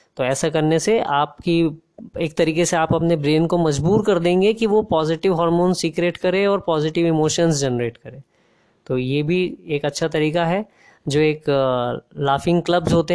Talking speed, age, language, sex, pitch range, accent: 175 wpm, 20-39, Hindi, female, 150-180 Hz, native